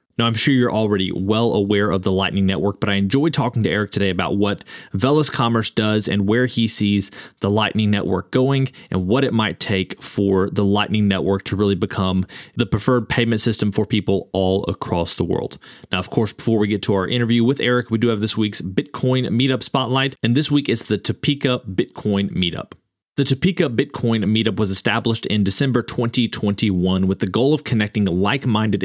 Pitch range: 100-125 Hz